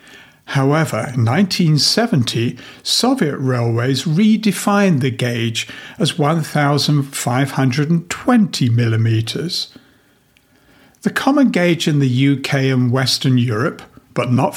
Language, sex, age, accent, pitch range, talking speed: English, male, 60-79, British, 130-185 Hz, 90 wpm